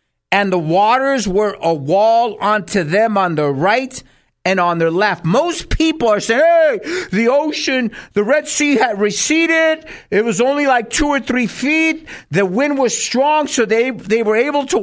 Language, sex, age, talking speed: English, male, 50-69, 180 wpm